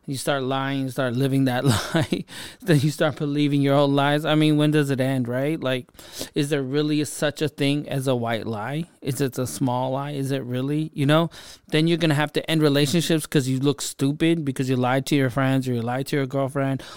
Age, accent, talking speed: 30-49, American, 235 wpm